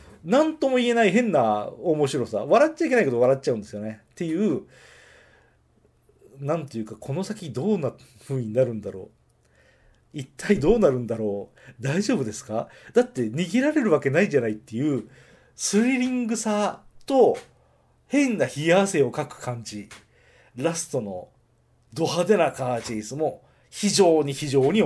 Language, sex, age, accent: Japanese, male, 40-59, native